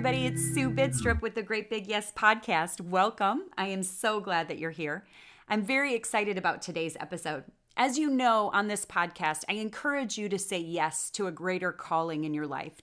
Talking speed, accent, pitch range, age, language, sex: 200 wpm, American, 170-215 Hz, 30-49, English, female